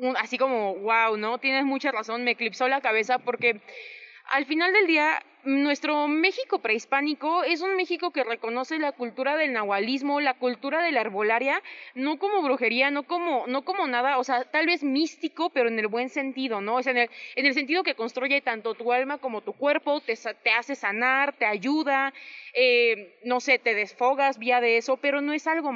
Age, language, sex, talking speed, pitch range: 20-39, Spanish, female, 200 wpm, 245-305 Hz